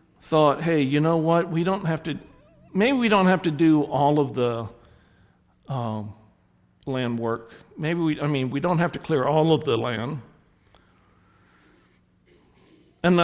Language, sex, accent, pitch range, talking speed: English, male, American, 110-175 Hz, 160 wpm